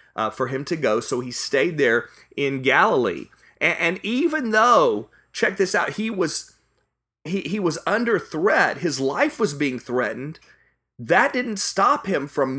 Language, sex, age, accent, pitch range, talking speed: English, male, 30-49, American, 135-195 Hz, 165 wpm